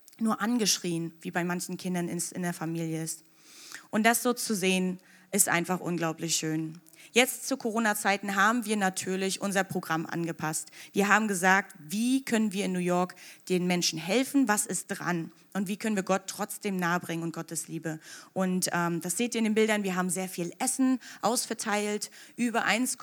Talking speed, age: 175 wpm, 30-49